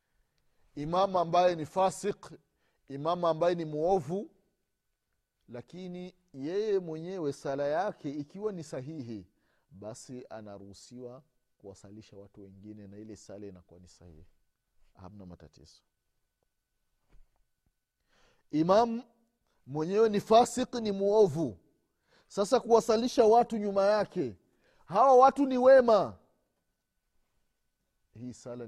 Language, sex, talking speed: Swahili, male, 95 wpm